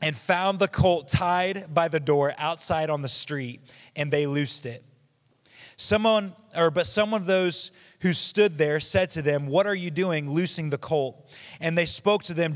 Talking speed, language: 190 wpm, English